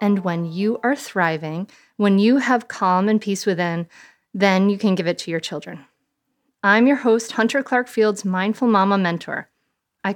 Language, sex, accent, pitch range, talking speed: English, female, American, 185-245 Hz, 175 wpm